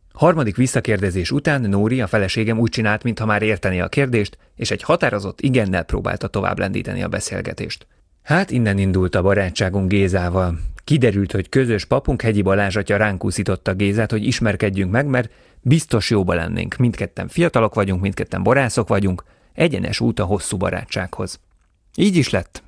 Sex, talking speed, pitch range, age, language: male, 150 wpm, 95-115 Hz, 30-49, Hungarian